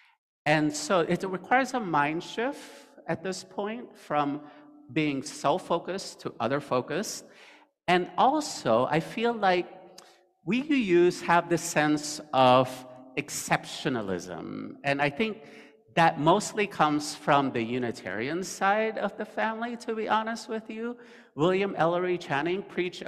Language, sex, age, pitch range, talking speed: English, male, 50-69, 140-200 Hz, 125 wpm